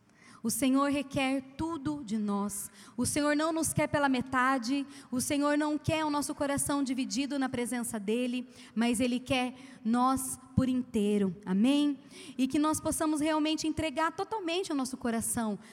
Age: 20-39